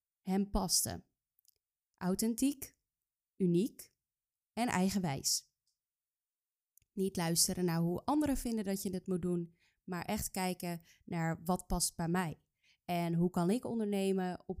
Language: Dutch